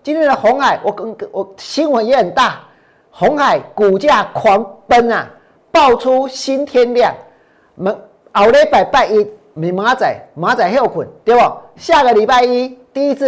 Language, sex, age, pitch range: Chinese, male, 50-69, 215-285 Hz